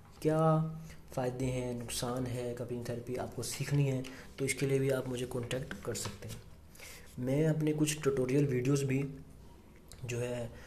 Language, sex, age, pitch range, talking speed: Hindi, male, 20-39, 120-140 Hz, 155 wpm